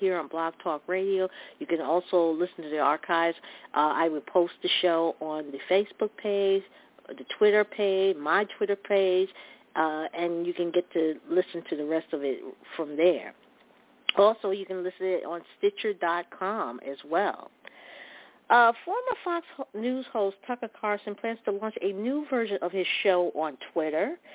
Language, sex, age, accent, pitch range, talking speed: English, female, 50-69, American, 170-230 Hz, 175 wpm